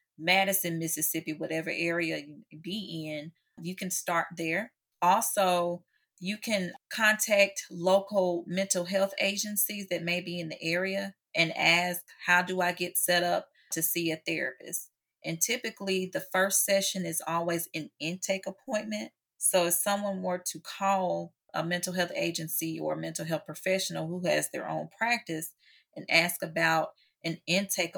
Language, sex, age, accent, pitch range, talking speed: English, female, 30-49, American, 165-195 Hz, 155 wpm